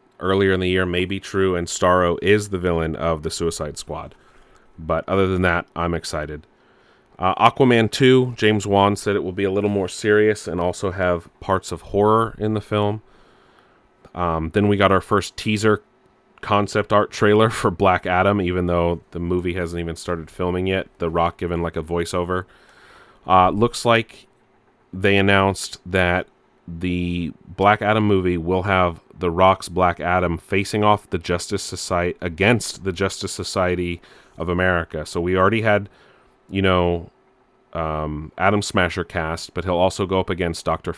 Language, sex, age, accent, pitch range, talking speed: English, male, 30-49, American, 85-100 Hz, 170 wpm